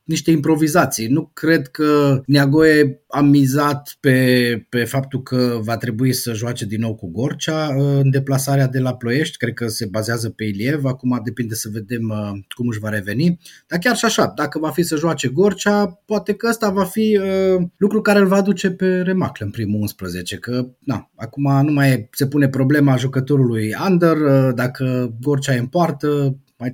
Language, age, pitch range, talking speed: Romanian, 30-49, 125-170 Hz, 185 wpm